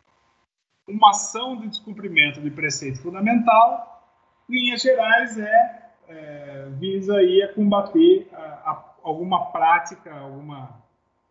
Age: 20-39